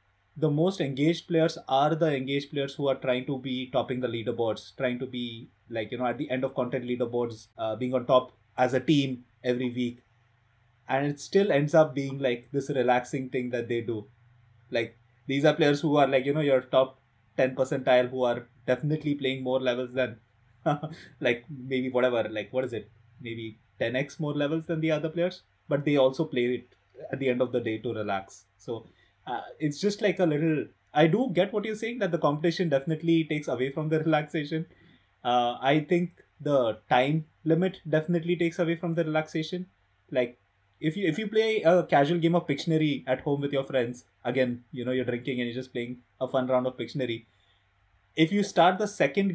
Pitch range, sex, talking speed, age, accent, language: 120-155 Hz, male, 200 wpm, 20-39, Indian, English